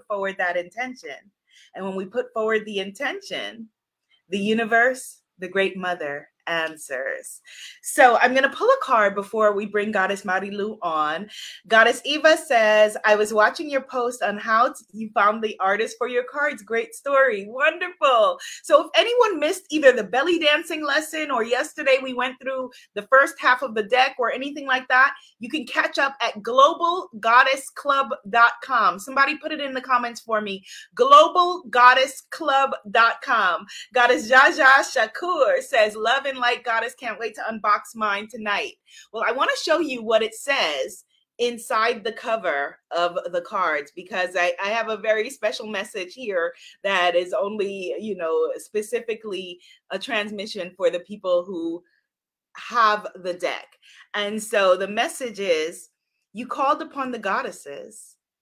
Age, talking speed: 30-49, 155 wpm